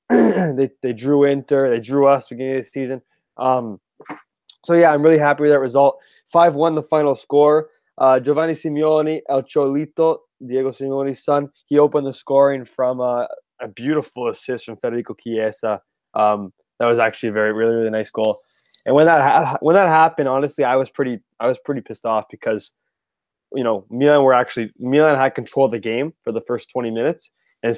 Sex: male